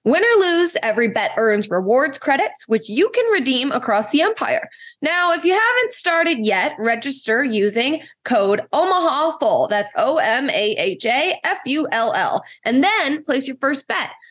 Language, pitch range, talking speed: English, 220-315 Hz, 140 wpm